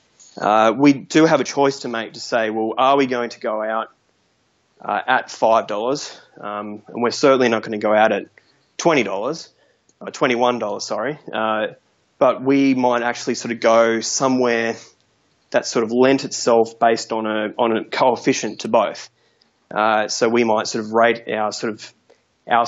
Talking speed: 185 wpm